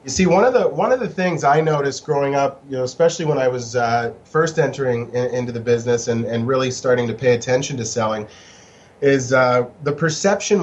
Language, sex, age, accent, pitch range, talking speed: English, male, 30-49, American, 120-150 Hz, 220 wpm